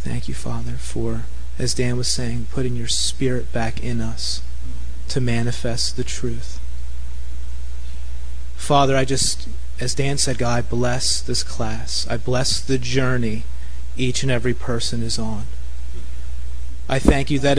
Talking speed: 145 wpm